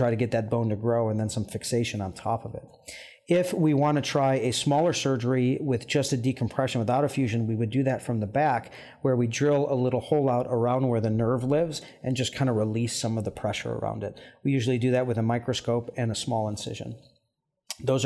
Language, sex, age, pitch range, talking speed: English, male, 40-59, 115-130 Hz, 240 wpm